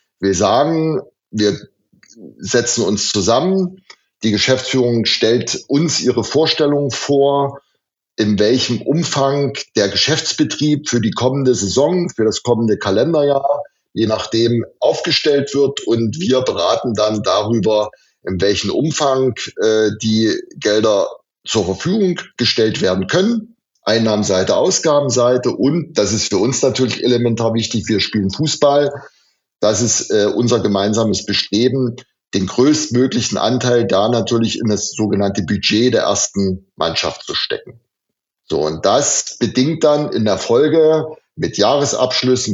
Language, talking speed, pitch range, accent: German, 125 wpm, 110-140 Hz, German